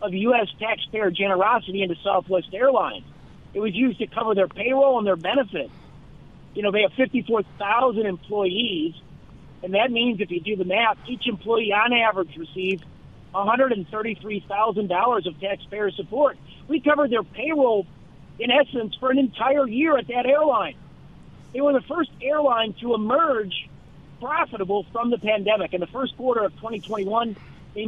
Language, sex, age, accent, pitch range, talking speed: English, male, 40-59, American, 200-270 Hz, 155 wpm